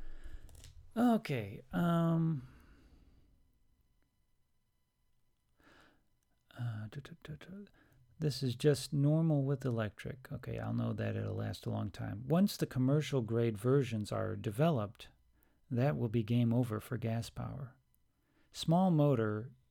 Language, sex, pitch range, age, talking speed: English, male, 110-140 Hz, 40-59, 105 wpm